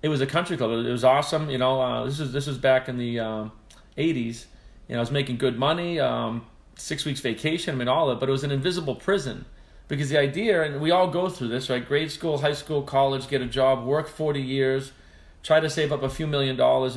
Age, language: 40-59, English